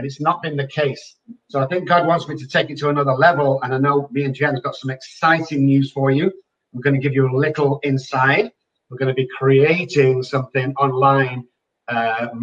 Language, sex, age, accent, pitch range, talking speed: English, male, 50-69, British, 135-175 Hz, 220 wpm